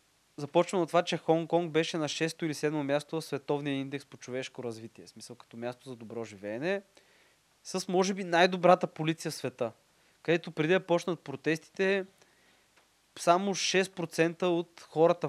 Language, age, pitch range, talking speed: Bulgarian, 20-39, 125-165 Hz, 155 wpm